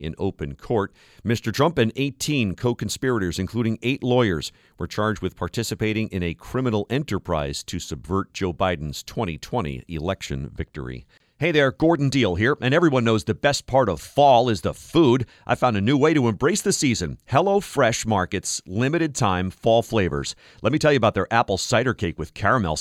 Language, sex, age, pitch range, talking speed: English, male, 40-59, 95-135 Hz, 180 wpm